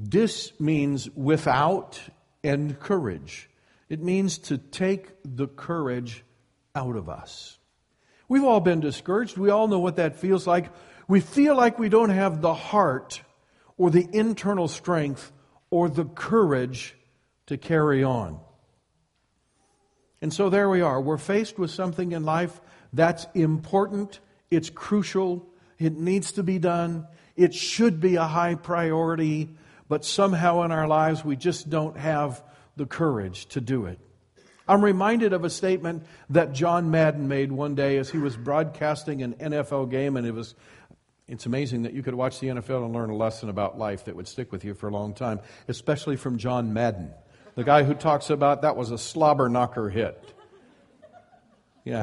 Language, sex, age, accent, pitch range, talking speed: English, male, 50-69, American, 125-175 Hz, 165 wpm